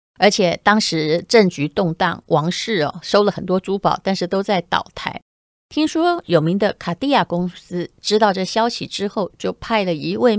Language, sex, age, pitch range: Chinese, female, 30-49, 170-225 Hz